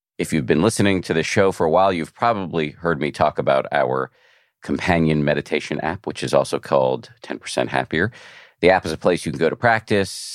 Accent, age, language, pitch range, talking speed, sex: American, 50-69, English, 75-100 Hz, 210 wpm, male